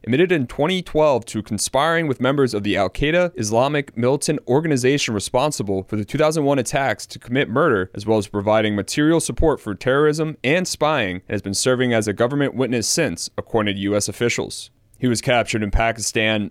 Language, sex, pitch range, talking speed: English, male, 105-135 Hz, 180 wpm